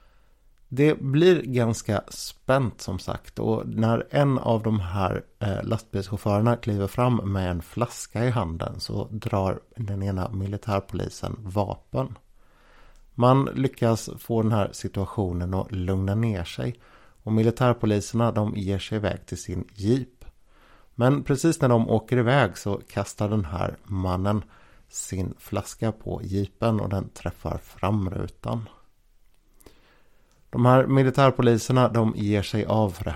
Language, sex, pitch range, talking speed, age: Swedish, male, 95-115 Hz, 130 wpm, 60-79